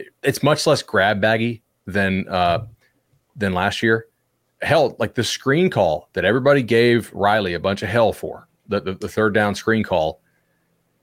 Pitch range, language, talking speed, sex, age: 100-135 Hz, English, 170 wpm, male, 30-49